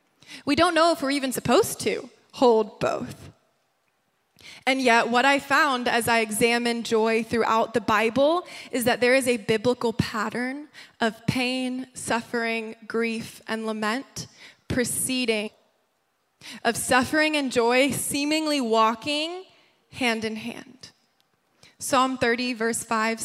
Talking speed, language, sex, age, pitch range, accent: 125 wpm, English, female, 20-39, 225-270 Hz, American